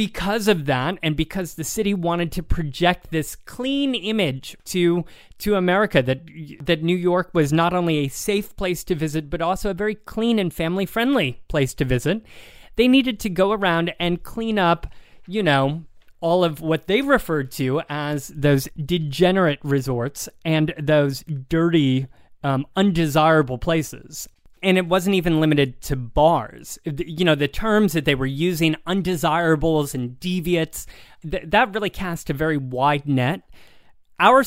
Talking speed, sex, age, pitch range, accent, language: 155 wpm, male, 20-39, 145-185 Hz, American, English